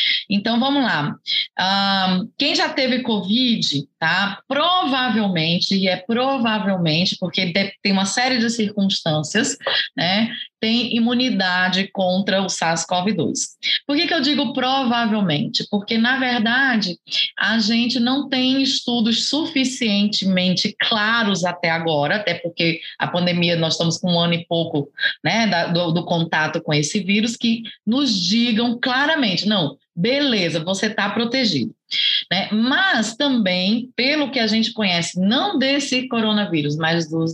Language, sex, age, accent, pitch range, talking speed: Portuguese, female, 20-39, Brazilian, 185-255 Hz, 130 wpm